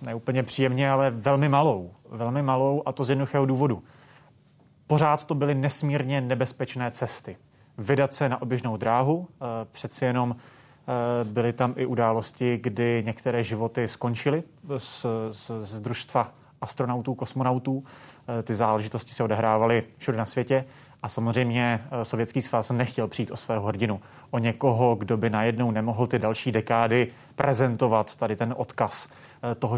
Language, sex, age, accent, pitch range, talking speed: Czech, male, 30-49, native, 115-145 Hz, 140 wpm